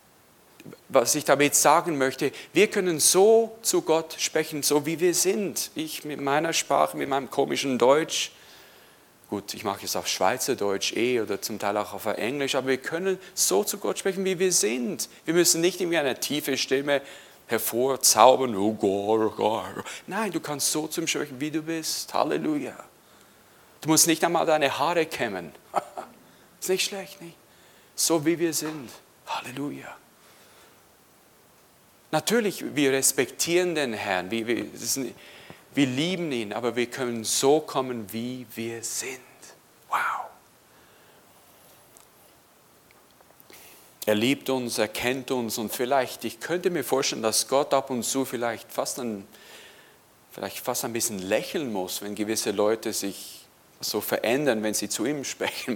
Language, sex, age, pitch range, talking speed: German, male, 40-59, 115-165 Hz, 140 wpm